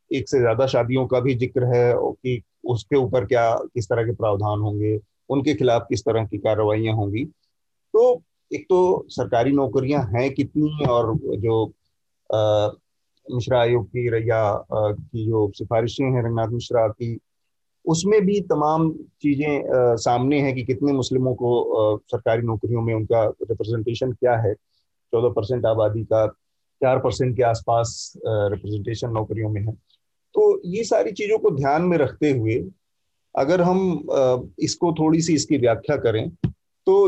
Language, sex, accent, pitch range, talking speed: Hindi, male, native, 115-150 Hz, 145 wpm